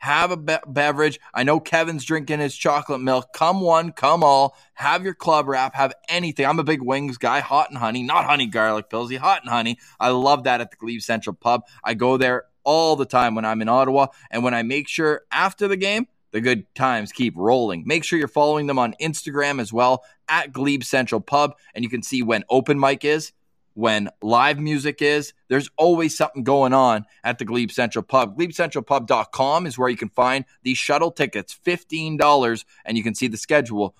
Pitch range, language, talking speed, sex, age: 120-155 Hz, English, 205 wpm, male, 20-39